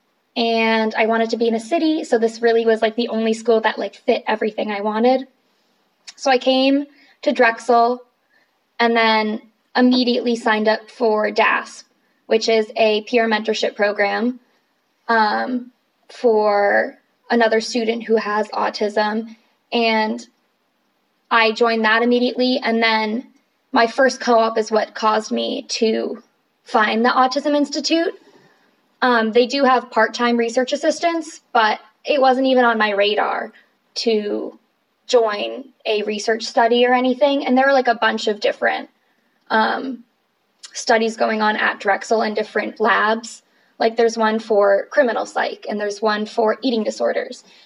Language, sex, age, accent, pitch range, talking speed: English, female, 10-29, American, 220-255 Hz, 145 wpm